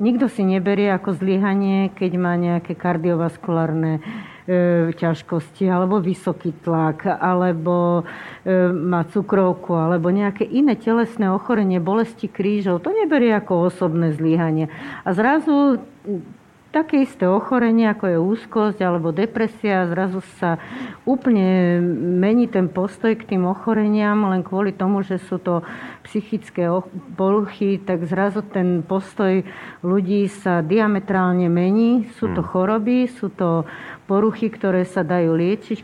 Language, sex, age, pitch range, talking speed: Slovak, female, 50-69, 175-210 Hz, 125 wpm